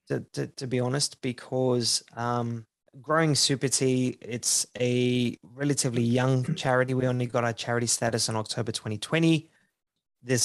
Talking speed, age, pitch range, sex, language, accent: 145 wpm, 20-39, 120-135 Hz, male, English, Australian